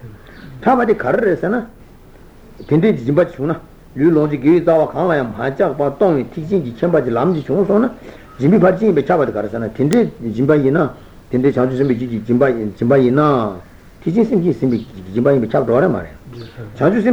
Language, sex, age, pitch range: Italian, male, 60-79, 120-165 Hz